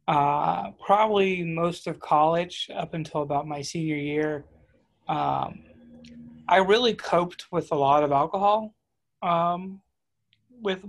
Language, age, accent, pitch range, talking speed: English, 30-49, American, 140-170 Hz, 120 wpm